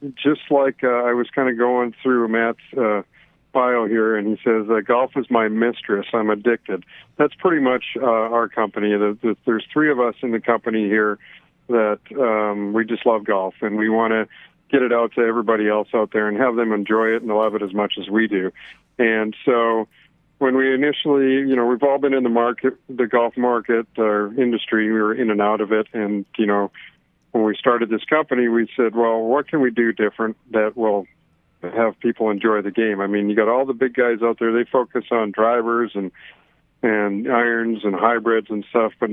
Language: English